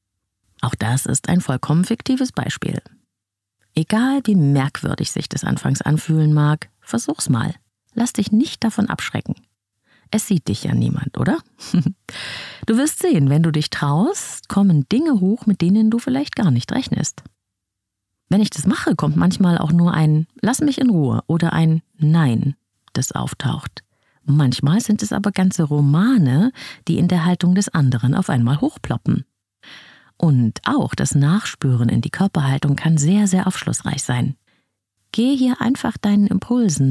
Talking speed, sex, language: 155 wpm, female, German